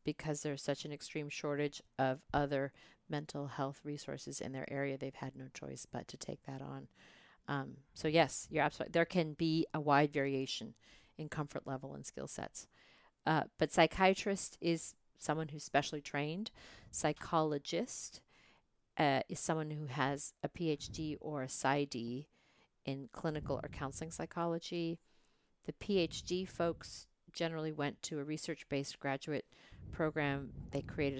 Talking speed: 145 wpm